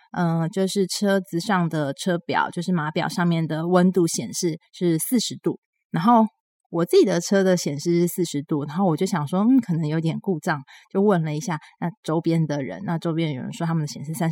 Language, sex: Chinese, female